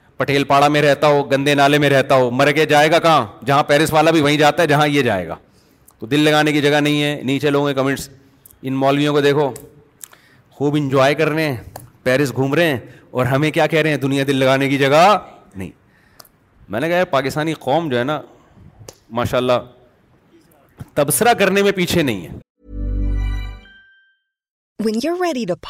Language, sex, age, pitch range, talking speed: Urdu, male, 30-49, 145-225 Hz, 130 wpm